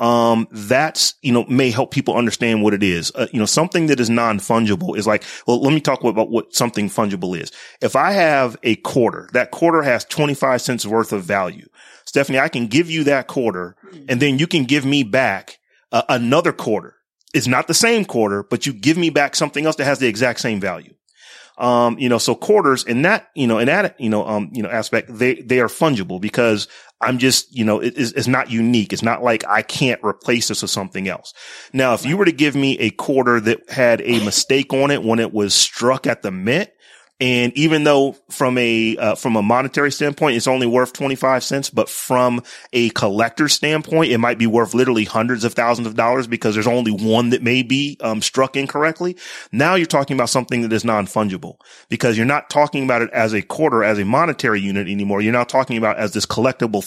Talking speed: 220 wpm